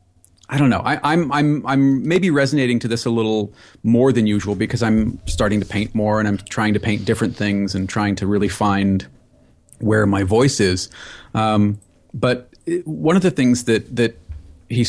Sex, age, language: male, 40-59, English